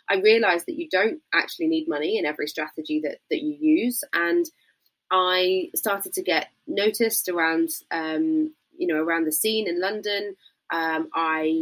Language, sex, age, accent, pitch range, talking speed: English, female, 20-39, British, 160-255 Hz, 165 wpm